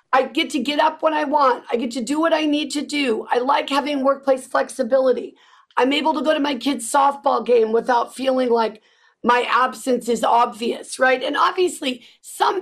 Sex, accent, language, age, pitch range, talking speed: female, American, English, 40-59, 230-295 Hz, 200 wpm